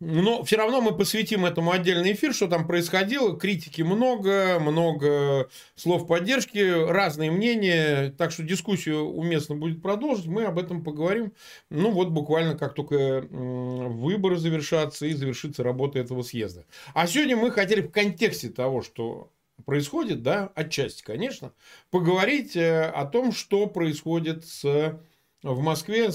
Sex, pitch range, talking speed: male, 140-190 Hz, 135 wpm